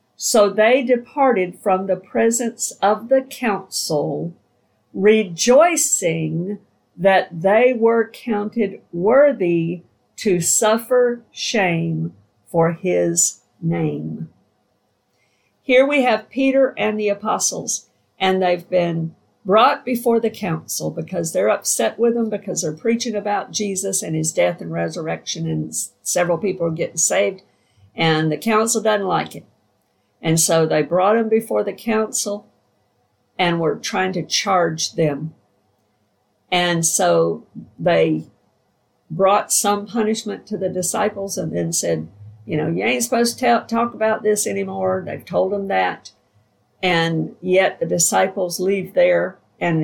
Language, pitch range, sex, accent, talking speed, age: English, 130-215 Hz, female, American, 130 wpm, 50-69